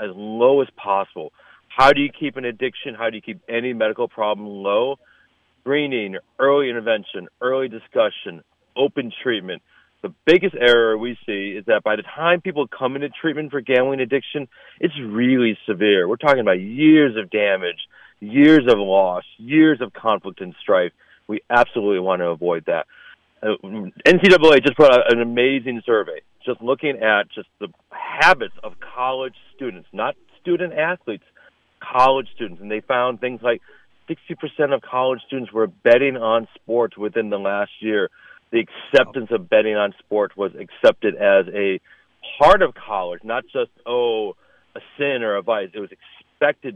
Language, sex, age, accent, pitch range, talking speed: English, male, 40-59, American, 105-145 Hz, 165 wpm